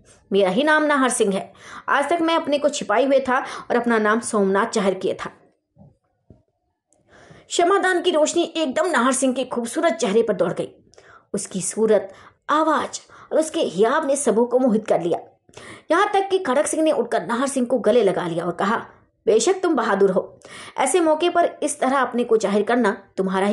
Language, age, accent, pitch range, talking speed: Hindi, 20-39, native, 210-315 Hz, 125 wpm